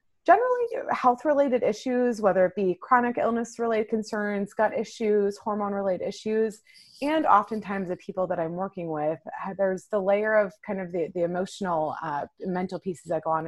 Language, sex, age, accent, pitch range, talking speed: English, female, 30-49, American, 170-215 Hz, 160 wpm